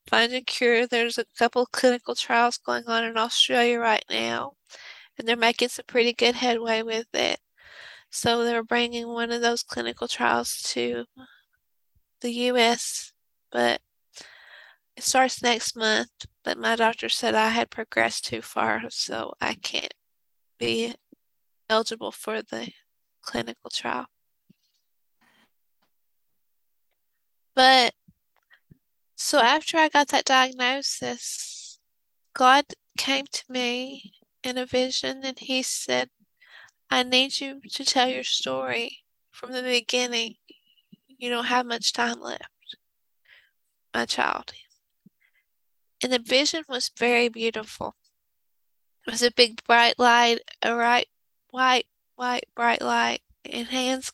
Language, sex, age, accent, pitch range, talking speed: English, female, 20-39, American, 230-255 Hz, 125 wpm